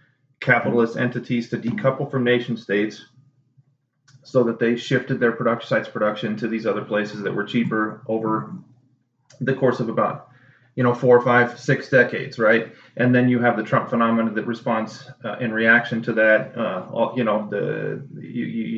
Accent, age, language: American, 30-49, English